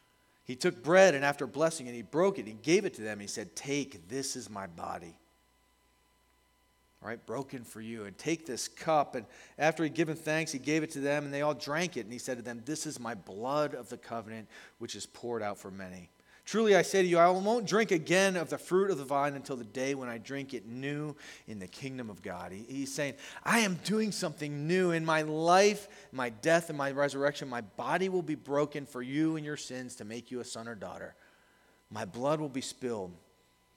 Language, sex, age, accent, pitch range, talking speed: English, male, 40-59, American, 110-155 Hz, 230 wpm